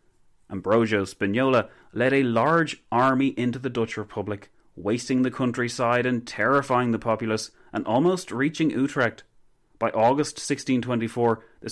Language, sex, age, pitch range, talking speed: English, male, 30-49, 100-135 Hz, 130 wpm